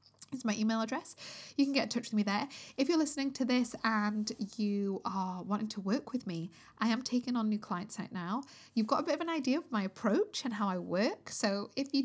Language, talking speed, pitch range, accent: English, 250 wpm, 190-235 Hz, British